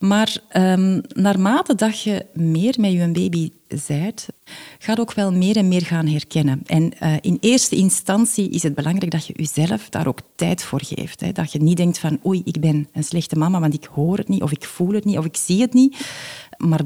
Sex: female